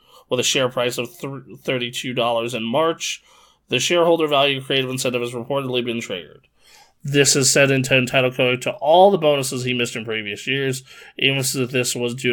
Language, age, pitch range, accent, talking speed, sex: English, 20-39, 120-140 Hz, American, 185 wpm, male